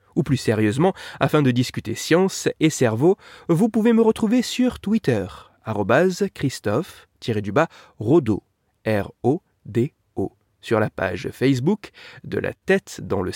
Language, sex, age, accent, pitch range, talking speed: French, male, 30-49, French, 115-190 Hz, 115 wpm